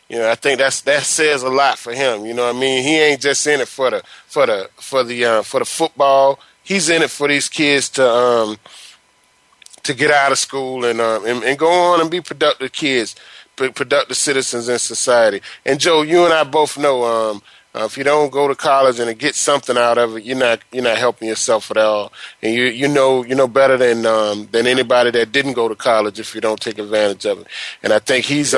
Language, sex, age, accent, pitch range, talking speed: English, male, 30-49, American, 120-165 Hz, 245 wpm